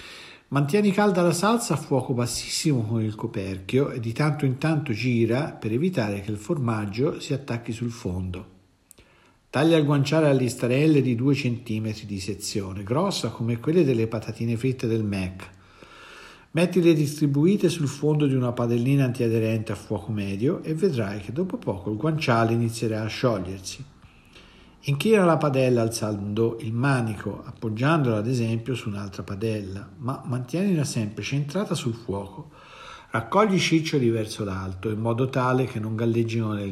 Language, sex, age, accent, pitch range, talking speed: Italian, male, 50-69, native, 105-140 Hz, 155 wpm